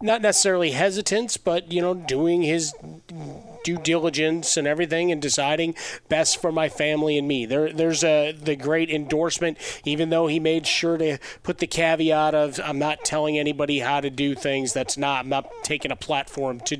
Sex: male